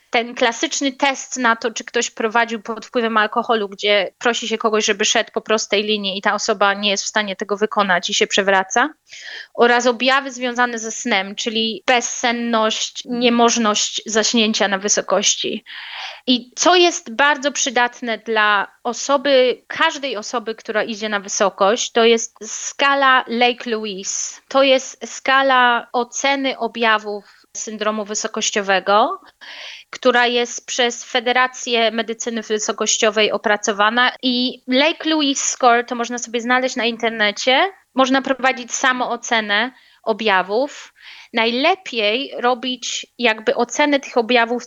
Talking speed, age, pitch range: 125 wpm, 20-39, 220-255 Hz